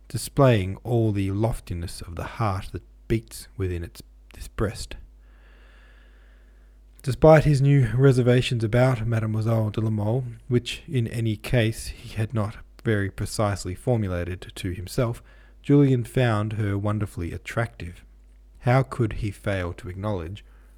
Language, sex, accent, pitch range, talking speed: English, male, Australian, 90-115 Hz, 125 wpm